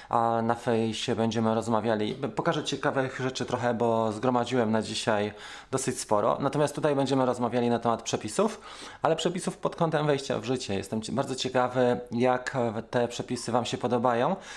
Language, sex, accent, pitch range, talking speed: Polish, male, native, 115-145 Hz, 155 wpm